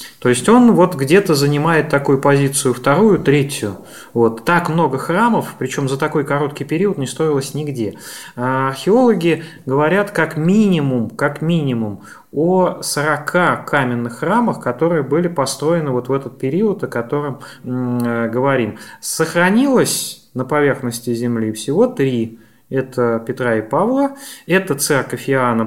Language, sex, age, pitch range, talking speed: Russian, male, 20-39, 125-170 Hz, 130 wpm